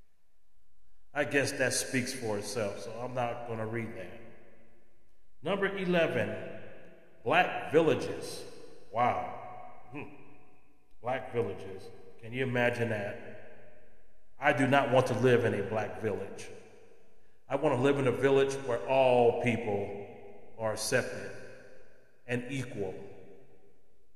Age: 30-49